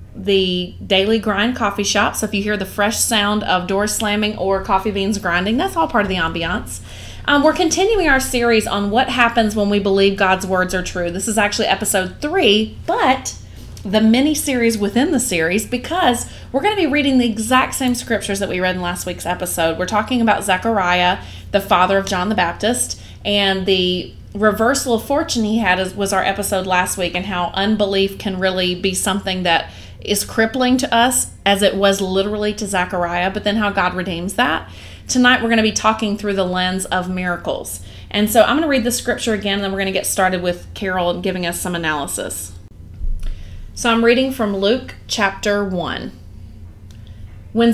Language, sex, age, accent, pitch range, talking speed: English, female, 30-49, American, 185-230 Hz, 195 wpm